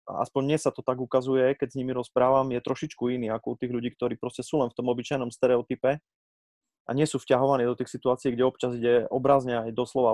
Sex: male